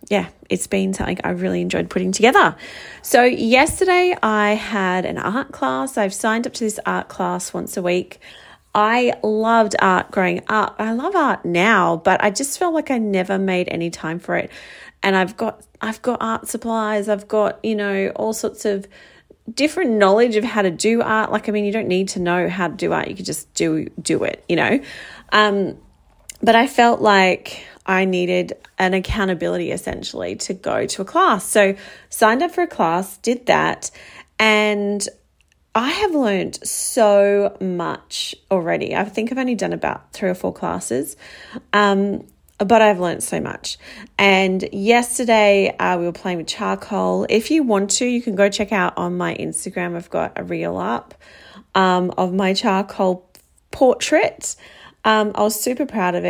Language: English